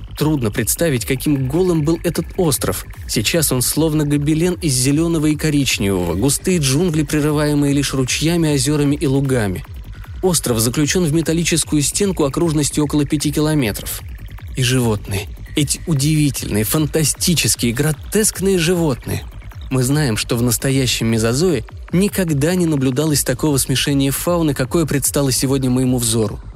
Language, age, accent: Russian, 20-39, native